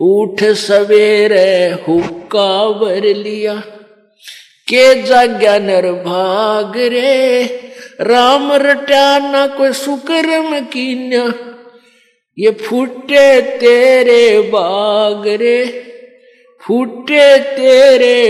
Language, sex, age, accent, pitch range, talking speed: Hindi, male, 50-69, native, 210-260 Hz, 75 wpm